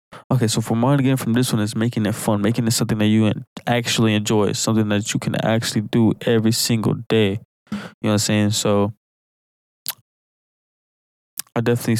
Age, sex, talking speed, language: 20-39, male, 180 wpm, English